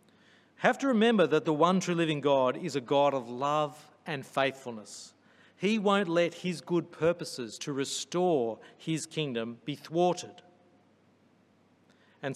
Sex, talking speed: male, 140 wpm